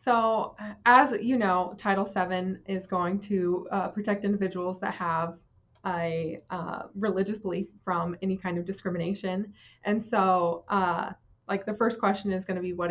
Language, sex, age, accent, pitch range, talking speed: English, female, 20-39, American, 180-210 Hz, 165 wpm